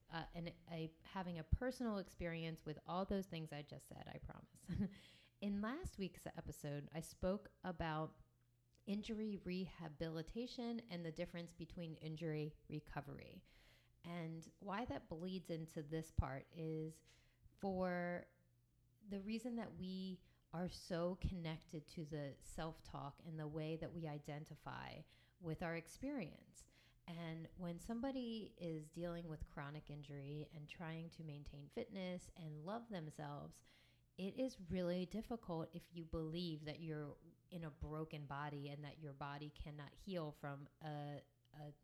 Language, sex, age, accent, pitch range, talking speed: English, female, 30-49, American, 150-185 Hz, 140 wpm